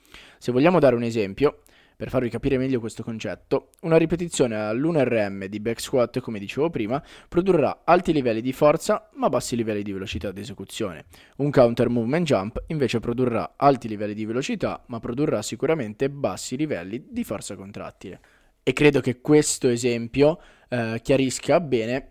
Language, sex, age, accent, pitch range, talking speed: Italian, male, 20-39, native, 115-145 Hz, 155 wpm